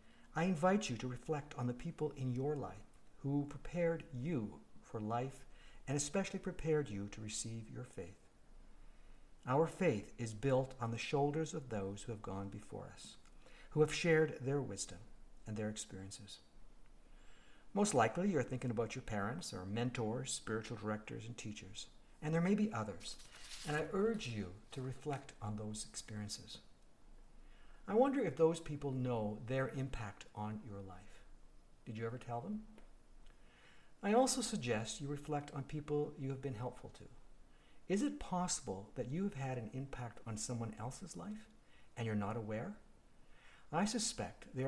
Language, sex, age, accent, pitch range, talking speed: English, male, 60-79, American, 105-150 Hz, 165 wpm